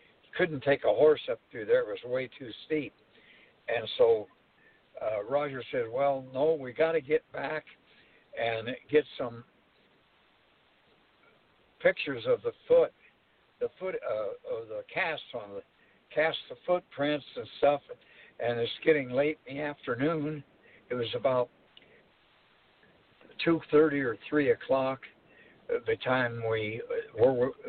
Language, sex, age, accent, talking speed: English, male, 60-79, American, 135 wpm